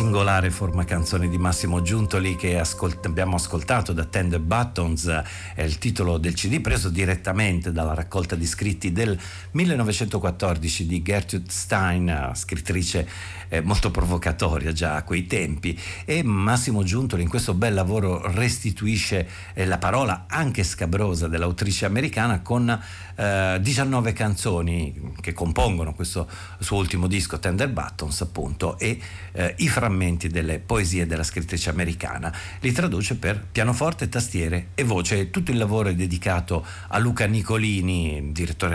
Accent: native